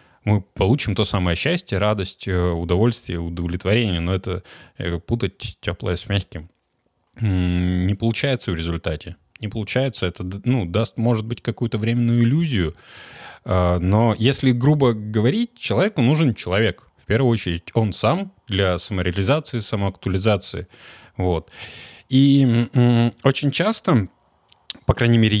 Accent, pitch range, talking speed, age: native, 95-125 Hz, 115 wpm, 20-39